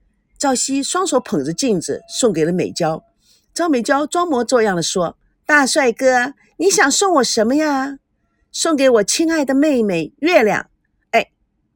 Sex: female